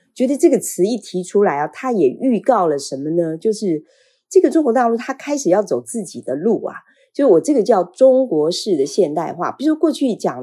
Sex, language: female, Chinese